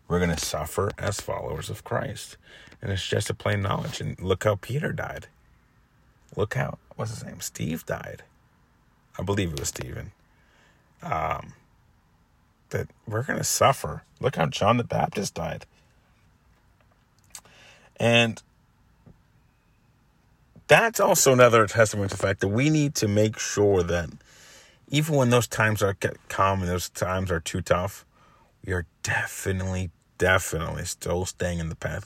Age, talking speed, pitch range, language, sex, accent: 30-49, 150 wpm, 90-115 Hz, English, male, American